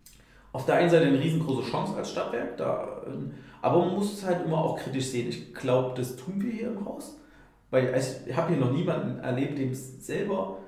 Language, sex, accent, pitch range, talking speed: German, male, German, 130-190 Hz, 215 wpm